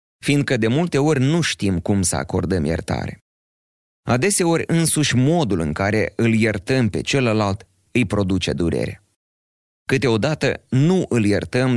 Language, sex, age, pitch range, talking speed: Romanian, male, 30-49, 95-130 Hz, 135 wpm